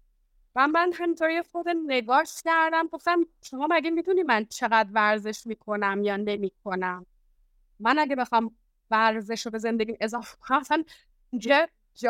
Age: 30-49